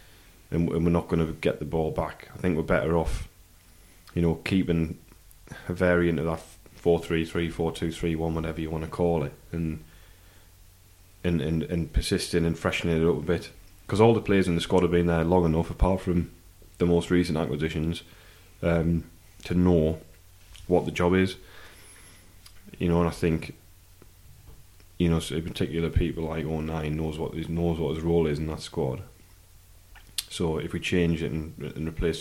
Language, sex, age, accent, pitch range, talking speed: English, male, 10-29, British, 85-95 Hz, 190 wpm